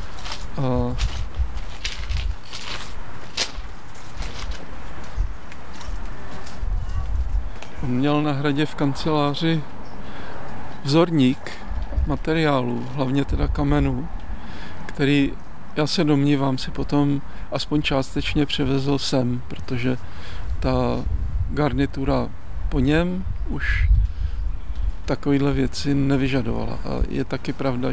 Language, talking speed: Czech, 75 wpm